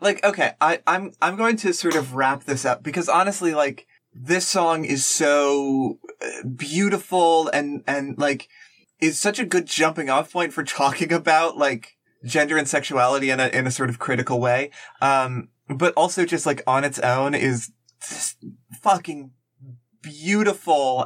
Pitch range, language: 120-155 Hz, English